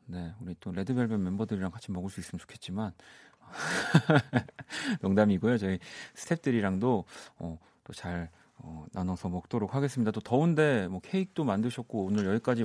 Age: 40-59